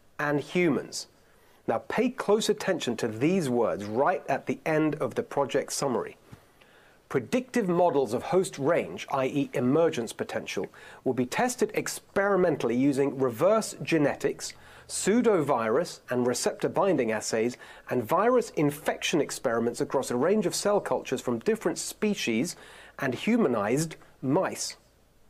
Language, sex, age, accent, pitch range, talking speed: English, male, 40-59, British, 130-195 Hz, 125 wpm